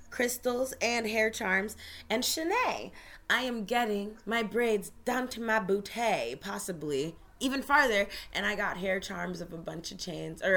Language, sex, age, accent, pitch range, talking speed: English, female, 20-39, American, 175-220 Hz, 165 wpm